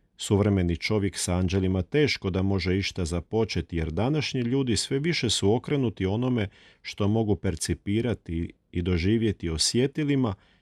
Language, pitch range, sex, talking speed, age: Croatian, 85-115 Hz, male, 130 wpm, 40-59